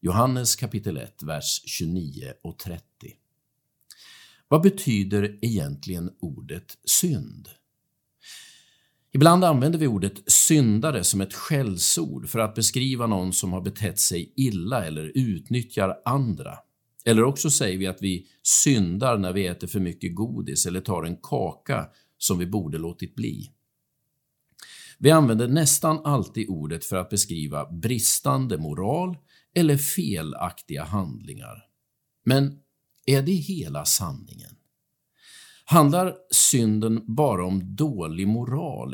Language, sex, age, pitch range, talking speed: Swedish, male, 50-69, 95-145 Hz, 120 wpm